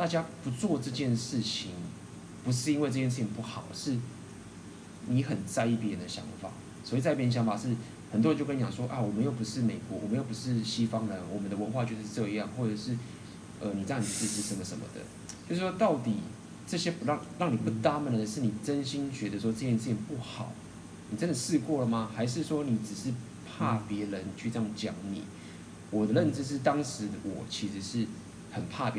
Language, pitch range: Chinese, 105-125 Hz